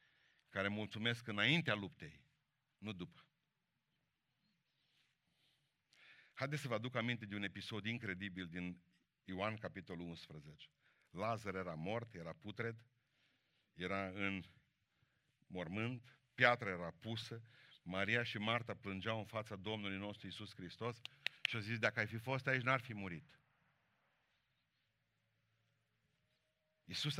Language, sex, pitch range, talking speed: Romanian, male, 105-140 Hz, 115 wpm